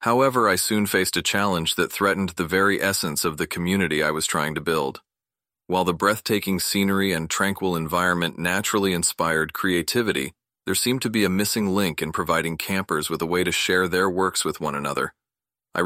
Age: 40-59